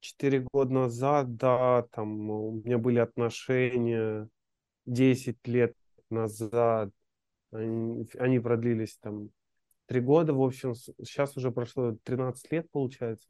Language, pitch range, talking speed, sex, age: Russian, 115-135 Hz, 115 wpm, male, 20-39